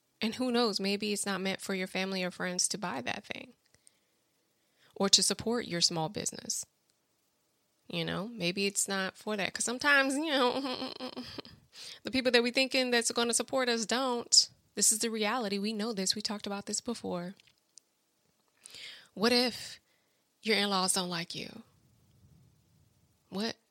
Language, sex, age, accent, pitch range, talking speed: English, female, 20-39, American, 190-235 Hz, 160 wpm